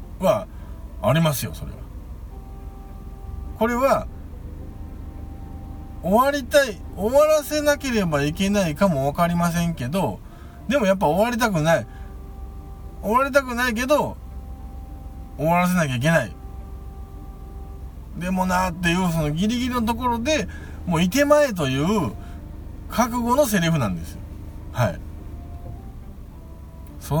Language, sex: Japanese, male